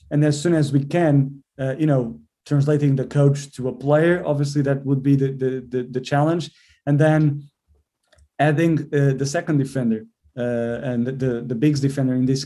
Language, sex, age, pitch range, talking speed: English, male, 30-49, 130-150 Hz, 195 wpm